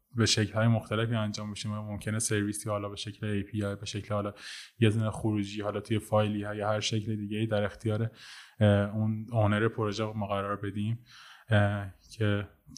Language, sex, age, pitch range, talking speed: Persian, male, 20-39, 100-110 Hz, 155 wpm